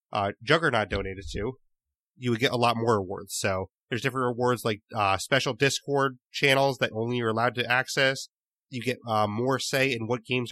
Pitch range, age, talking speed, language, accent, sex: 120-155 Hz, 30-49, 195 wpm, English, American, male